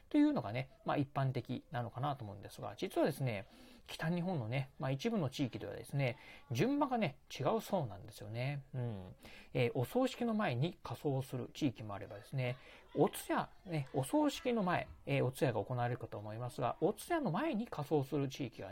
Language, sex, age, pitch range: Japanese, male, 40-59, 120-165 Hz